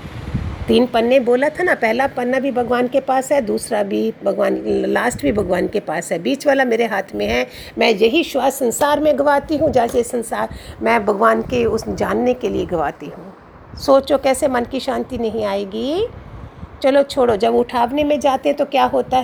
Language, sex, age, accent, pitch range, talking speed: Hindi, female, 50-69, native, 235-305 Hz, 195 wpm